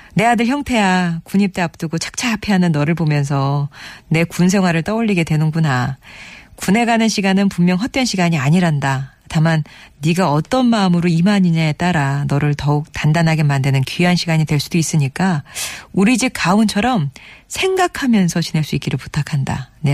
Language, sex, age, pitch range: Korean, female, 40-59, 150-200 Hz